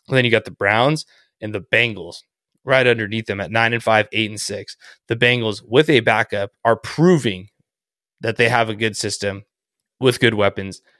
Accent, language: American, English